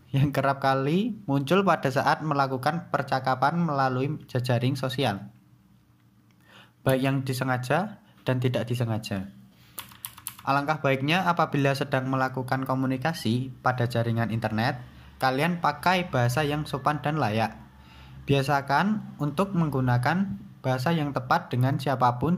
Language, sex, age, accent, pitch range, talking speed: Indonesian, male, 20-39, native, 125-150 Hz, 110 wpm